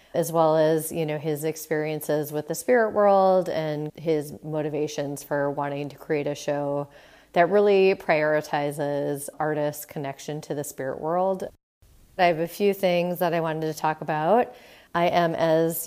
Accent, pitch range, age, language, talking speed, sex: American, 150-170 Hz, 30-49, English, 165 wpm, female